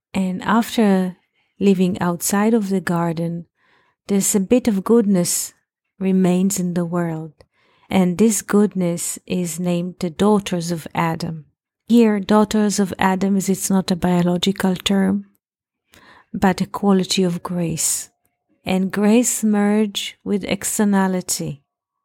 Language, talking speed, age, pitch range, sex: English, 120 wpm, 40-59, 175-205 Hz, female